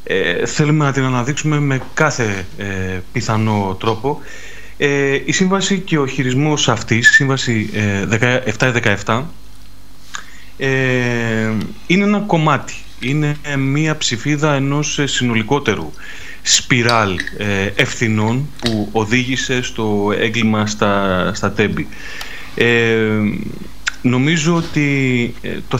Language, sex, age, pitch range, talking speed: Greek, male, 30-49, 105-140 Hz, 85 wpm